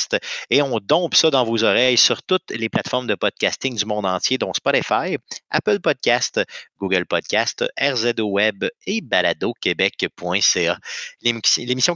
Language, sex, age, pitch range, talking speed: French, male, 30-49, 105-155 Hz, 135 wpm